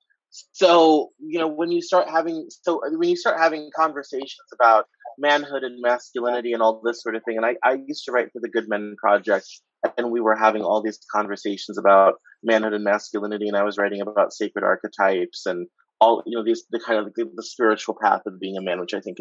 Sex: male